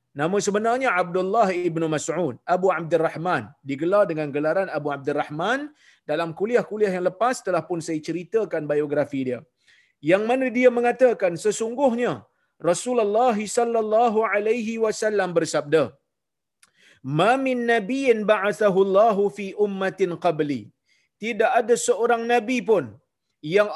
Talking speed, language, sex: 115 wpm, Malayalam, male